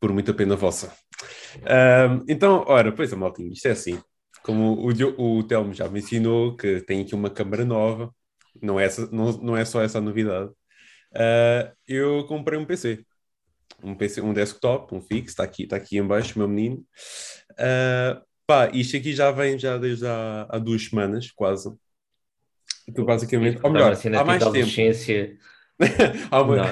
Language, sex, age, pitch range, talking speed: English, male, 20-39, 110-135 Hz, 165 wpm